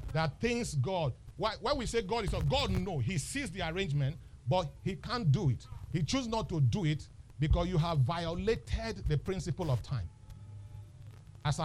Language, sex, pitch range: English, male, 115-150 Hz